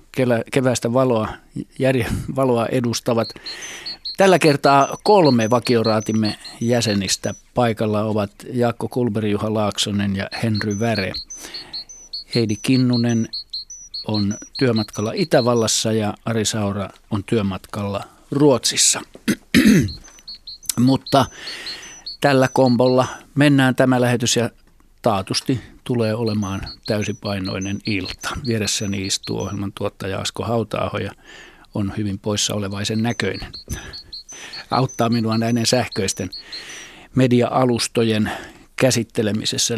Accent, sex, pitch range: native, male, 105-125 Hz